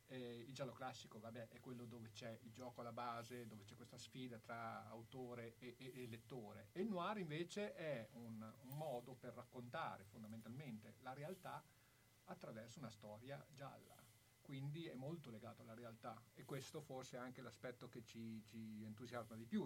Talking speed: 175 wpm